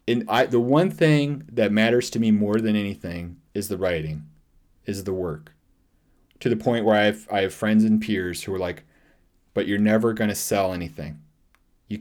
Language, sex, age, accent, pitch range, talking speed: English, male, 30-49, American, 90-120 Hz, 200 wpm